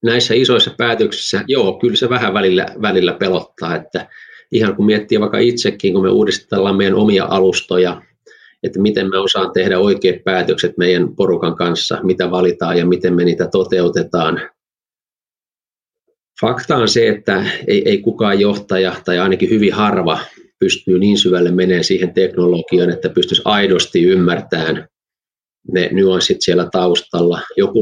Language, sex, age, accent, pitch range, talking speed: Finnish, male, 30-49, native, 90-120 Hz, 140 wpm